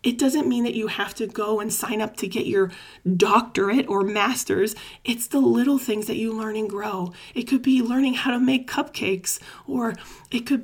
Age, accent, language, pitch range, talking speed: 30-49, American, English, 205-255 Hz, 210 wpm